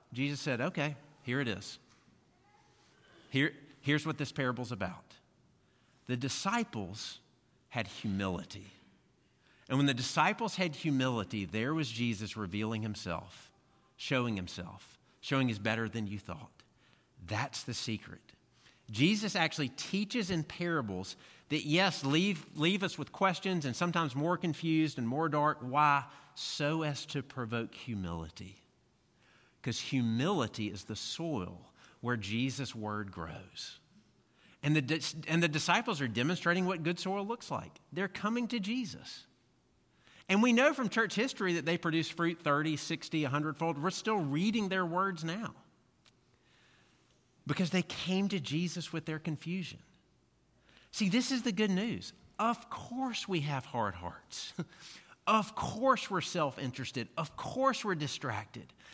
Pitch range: 120-180 Hz